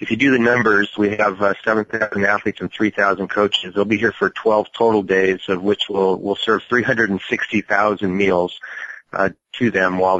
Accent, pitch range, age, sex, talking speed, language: American, 95-110 Hz, 30-49, male, 180 wpm, English